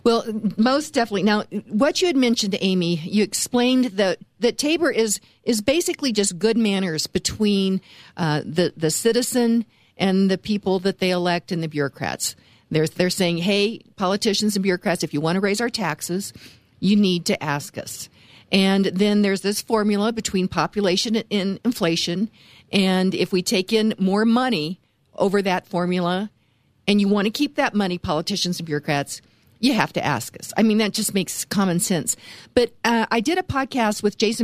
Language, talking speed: English, 180 wpm